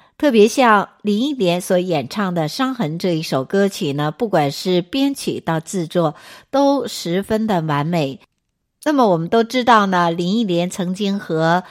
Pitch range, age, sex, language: 170-225 Hz, 60-79, female, Chinese